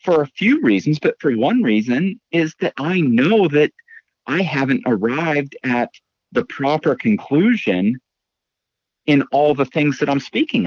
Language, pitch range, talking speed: English, 100-165 Hz, 150 wpm